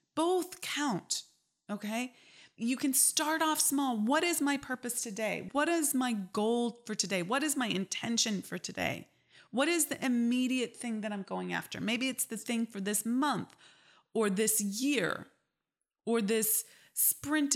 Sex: female